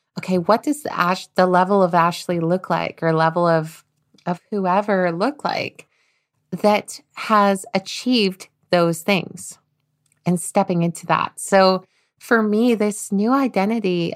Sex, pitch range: female, 175-205 Hz